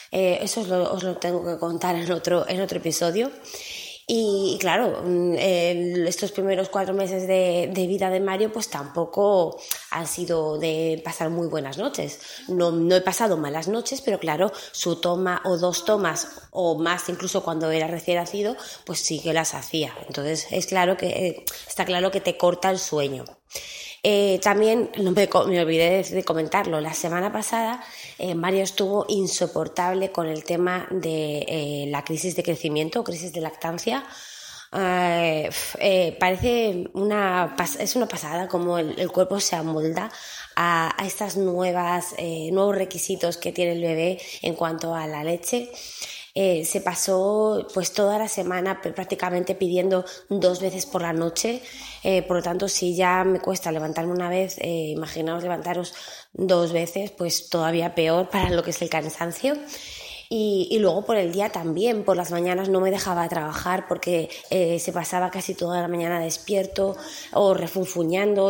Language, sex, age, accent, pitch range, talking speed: Spanish, female, 20-39, Spanish, 170-195 Hz, 165 wpm